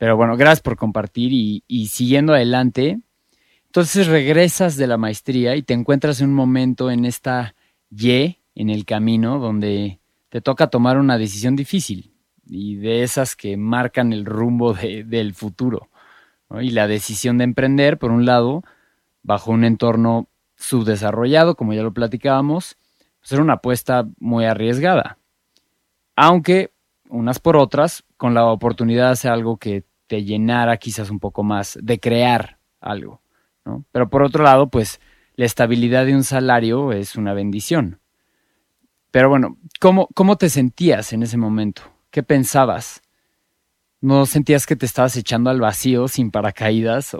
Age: 30-49